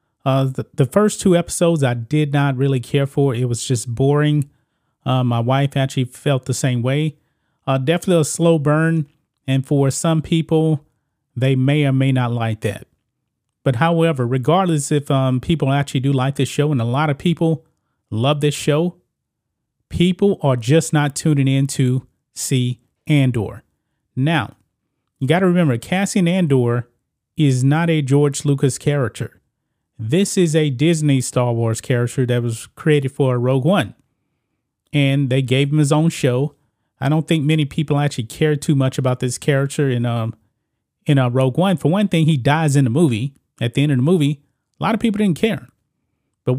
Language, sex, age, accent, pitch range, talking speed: English, male, 30-49, American, 130-155 Hz, 180 wpm